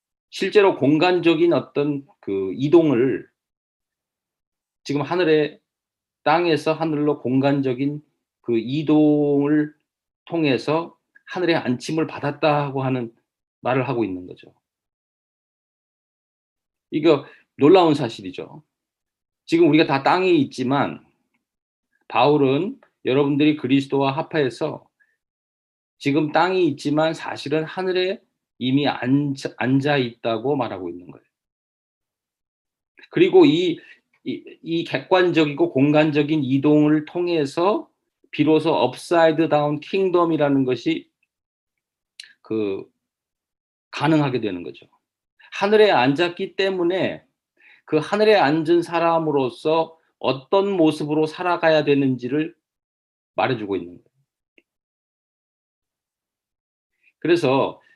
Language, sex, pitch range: Korean, male, 135-170 Hz